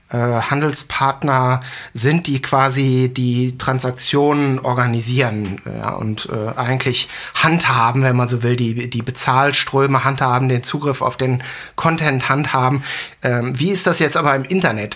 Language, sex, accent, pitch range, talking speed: English, male, German, 125-145 Hz, 135 wpm